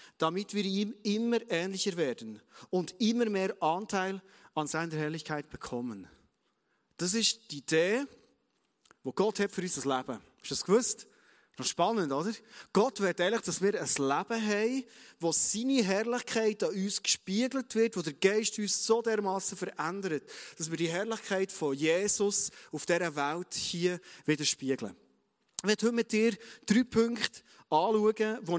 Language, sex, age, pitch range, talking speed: German, male, 30-49, 155-215 Hz, 155 wpm